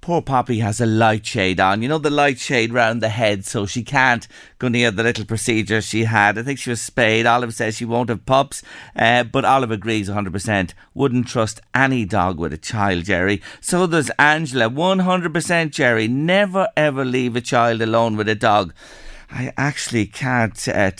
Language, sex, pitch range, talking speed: English, male, 110-145 Hz, 200 wpm